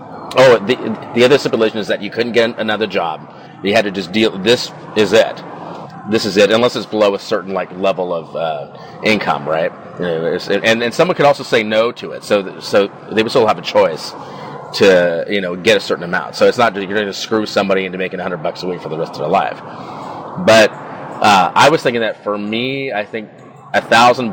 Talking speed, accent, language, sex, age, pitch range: 225 wpm, American, English, male, 30-49, 95-115 Hz